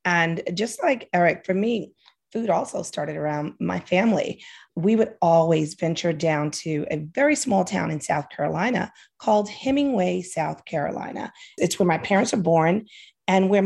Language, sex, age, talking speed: English, female, 40-59, 165 wpm